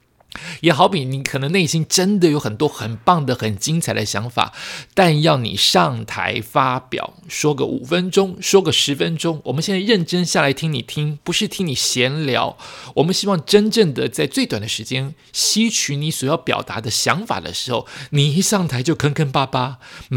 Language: Chinese